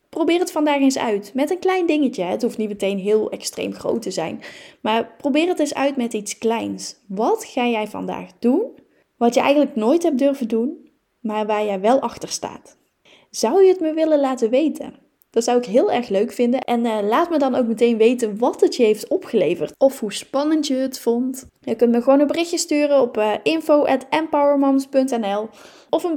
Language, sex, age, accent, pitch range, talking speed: Dutch, female, 10-29, Dutch, 225-295 Hz, 205 wpm